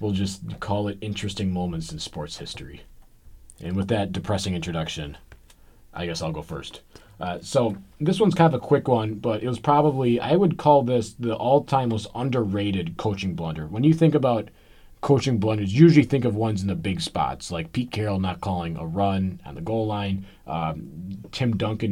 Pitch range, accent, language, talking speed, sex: 95-125 Hz, American, English, 190 wpm, male